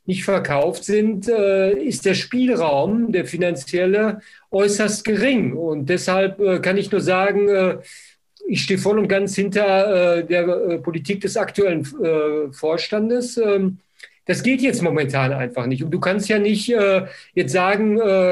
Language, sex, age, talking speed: German, male, 50-69, 130 wpm